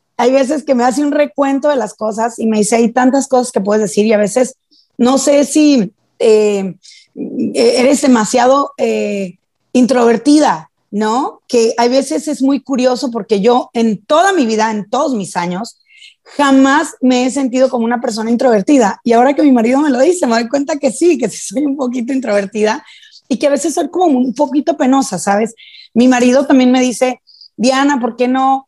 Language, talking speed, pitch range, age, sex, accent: Spanish, 195 wpm, 230-280 Hz, 30-49, female, Mexican